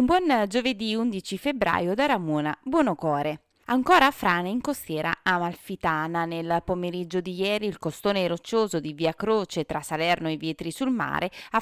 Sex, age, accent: female, 30-49, native